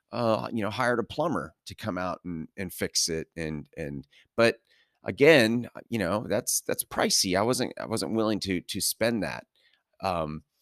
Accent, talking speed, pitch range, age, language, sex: American, 180 wpm, 85-115 Hz, 30-49, English, male